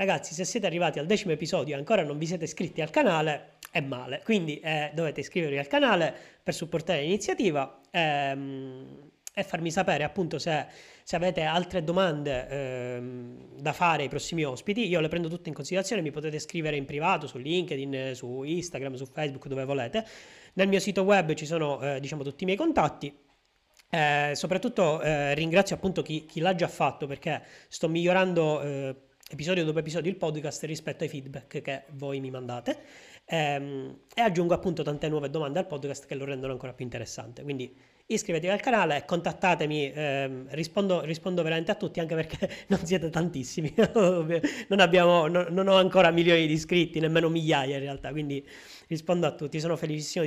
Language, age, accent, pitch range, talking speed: Italian, 30-49, native, 145-180 Hz, 175 wpm